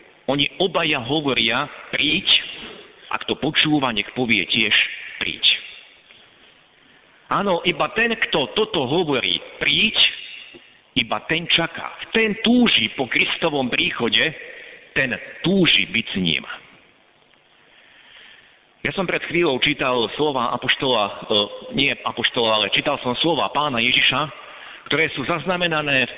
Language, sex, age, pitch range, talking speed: Slovak, male, 50-69, 120-170 Hz, 115 wpm